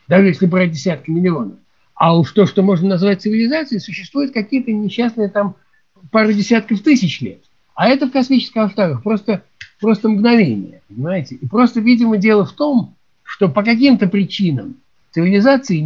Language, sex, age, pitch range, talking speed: Russian, male, 60-79, 160-230 Hz, 150 wpm